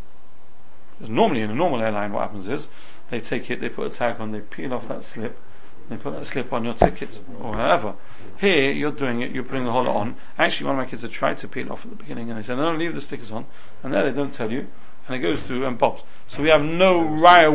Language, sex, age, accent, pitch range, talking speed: English, male, 40-59, British, 115-150 Hz, 265 wpm